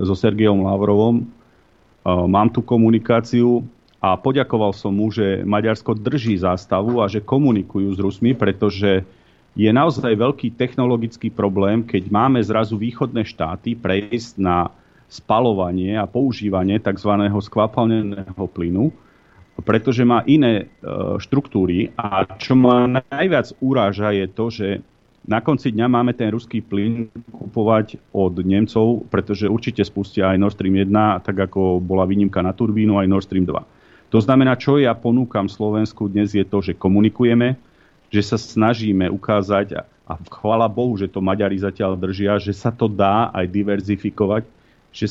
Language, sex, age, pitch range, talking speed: Slovak, male, 40-59, 100-115 Hz, 145 wpm